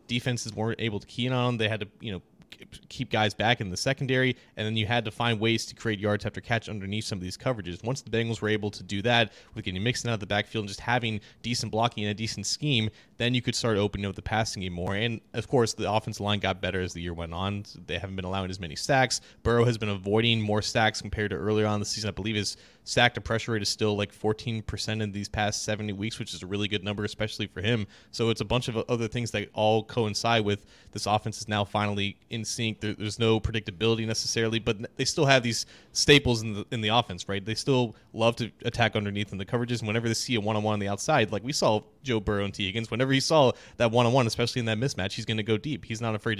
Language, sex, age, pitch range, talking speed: English, male, 20-39, 105-120 Hz, 265 wpm